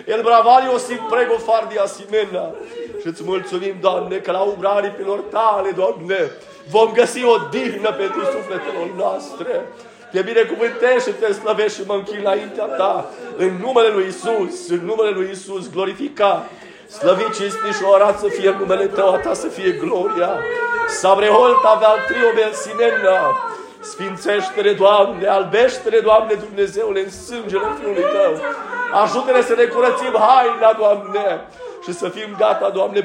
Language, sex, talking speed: Romanian, male, 140 wpm